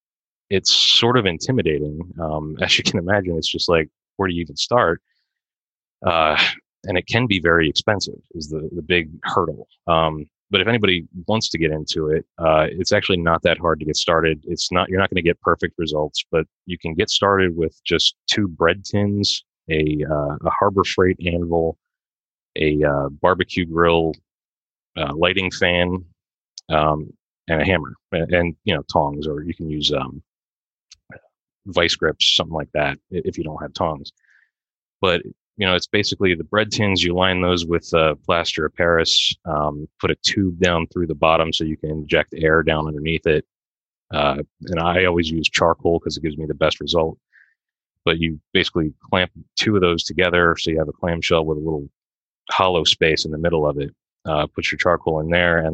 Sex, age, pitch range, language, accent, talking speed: male, 30-49, 80-90 Hz, English, American, 190 wpm